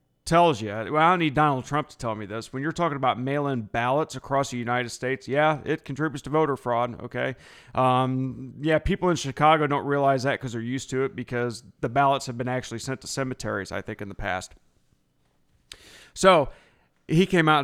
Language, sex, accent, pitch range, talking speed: English, male, American, 120-150 Hz, 205 wpm